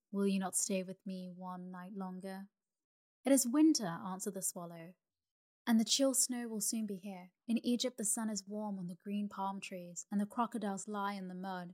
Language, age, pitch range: English, 20-39, 185-210 Hz